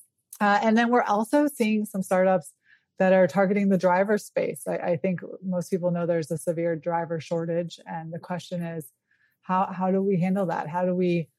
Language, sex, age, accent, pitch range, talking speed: English, female, 20-39, American, 165-195 Hz, 200 wpm